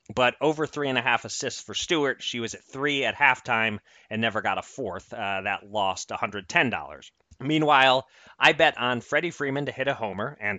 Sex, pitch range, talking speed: male, 105-135 Hz, 200 wpm